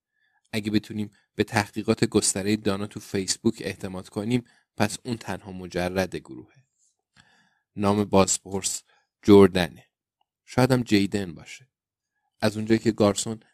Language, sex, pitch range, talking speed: Persian, male, 95-110 Hz, 110 wpm